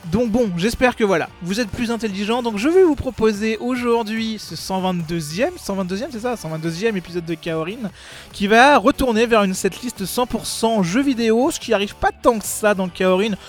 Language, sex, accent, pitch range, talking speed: French, male, French, 180-225 Hz, 190 wpm